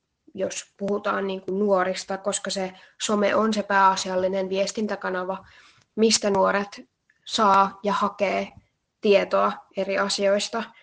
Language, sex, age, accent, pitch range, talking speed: Finnish, female, 20-39, native, 195-215 Hz, 100 wpm